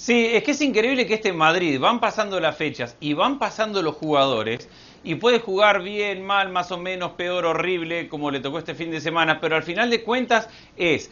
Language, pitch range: Spanish, 140-185 Hz